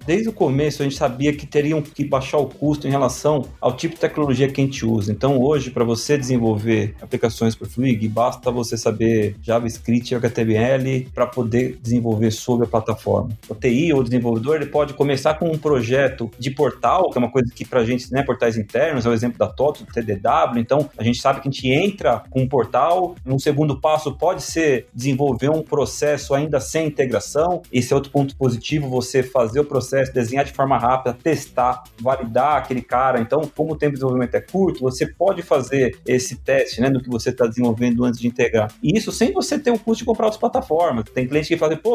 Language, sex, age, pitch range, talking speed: Portuguese, male, 30-49, 125-170 Hz, 215 wpm